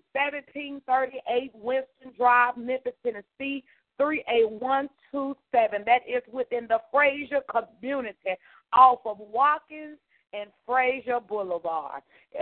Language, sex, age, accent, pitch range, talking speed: English, female, 40-59, American, 230-280 Hz, 85 wpm